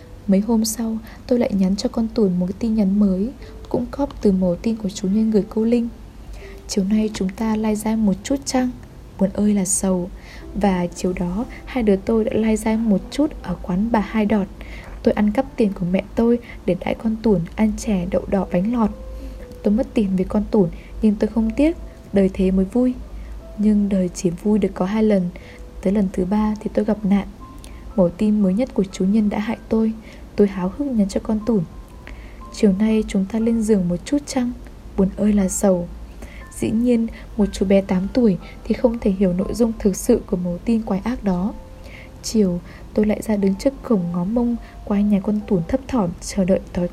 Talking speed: 215 wpm